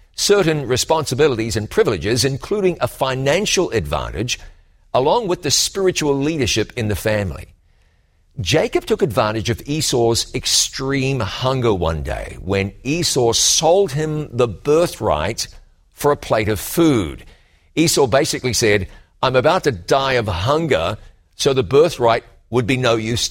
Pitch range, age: 100-145 Hz, 50-69